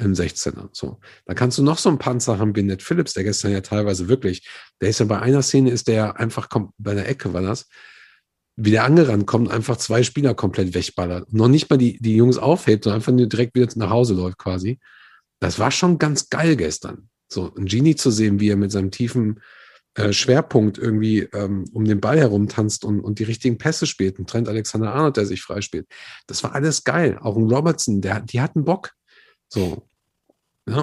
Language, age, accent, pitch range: German, 50-69, German, 100-130 Hz